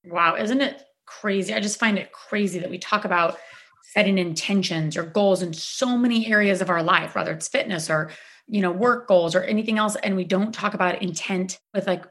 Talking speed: 215 wpm